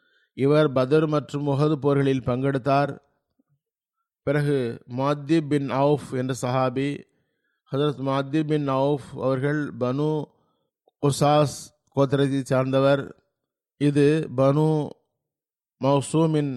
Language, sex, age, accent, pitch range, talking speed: Tamil, male, 50-69, native, 130-150 Hz, 85 wpm